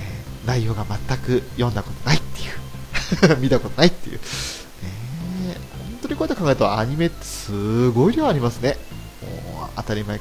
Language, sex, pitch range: Japanese, male, 105-135 Hz